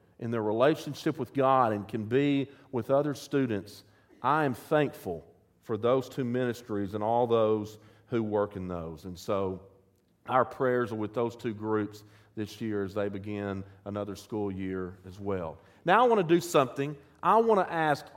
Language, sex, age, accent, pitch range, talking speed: English, male, 40-59, American, 115-170 Hz, 180 wpm